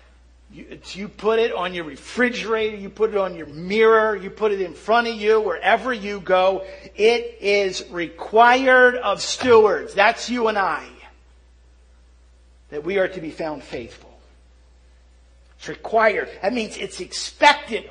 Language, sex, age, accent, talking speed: English, male, 50-69, American, 145 wpm